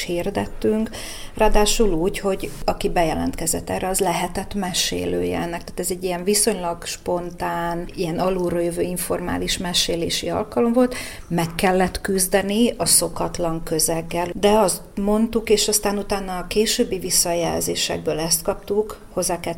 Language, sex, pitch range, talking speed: Hungarian, female, 170-195 Hz, 125 wpm